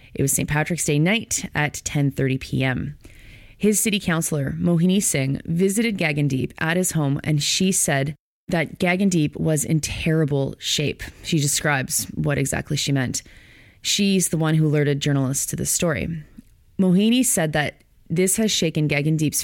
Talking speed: 155 wpm